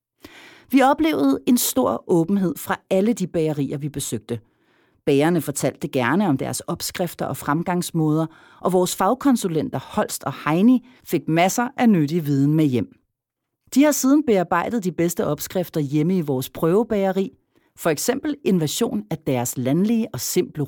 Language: Danish